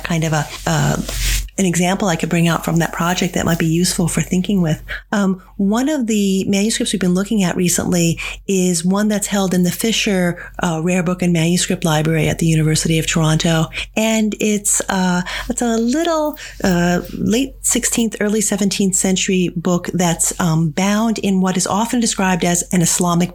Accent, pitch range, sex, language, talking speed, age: American, 170-210 Hz, female, English, 185 wpm, 40-59